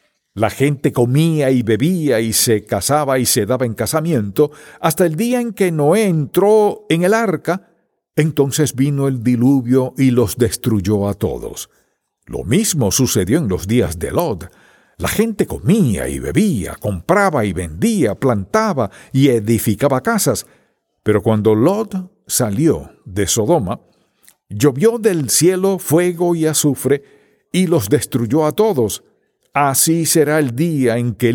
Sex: male